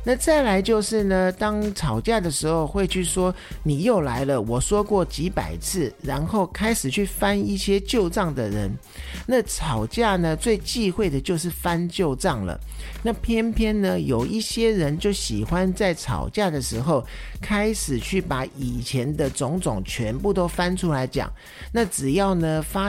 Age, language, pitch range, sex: 50-69, Chinese, 145-205 Hz, male